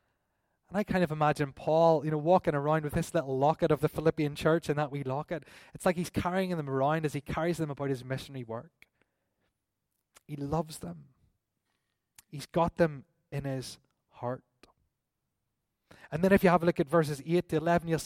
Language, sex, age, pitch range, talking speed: English, male, 20-39, 130-170 Hz, 195 wpm